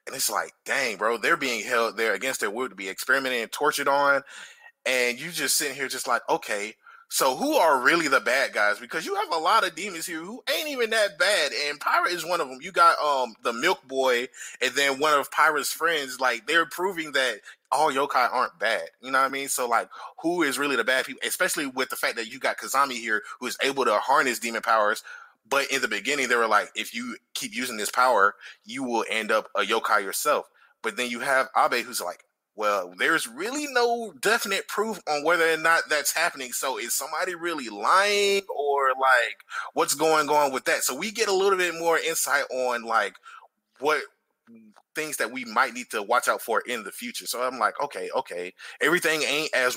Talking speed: 220 wpm